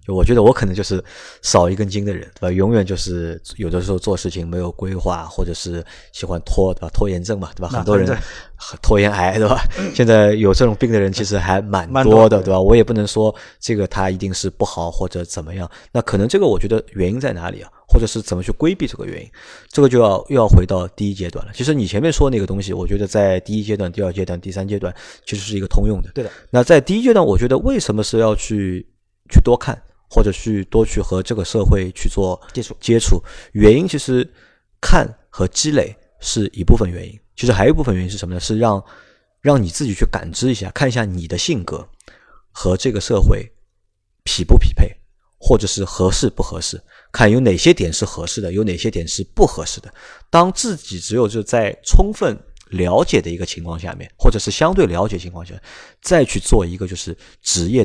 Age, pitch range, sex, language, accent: 20-39, 90-110 Hz, male, Chinese, native